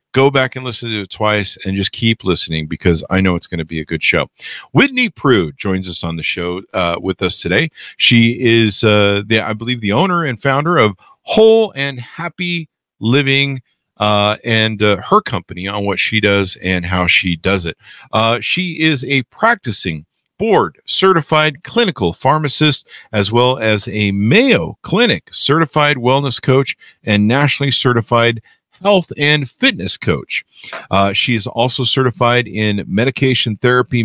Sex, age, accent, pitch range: male, 50-69, American, 100-140 Hz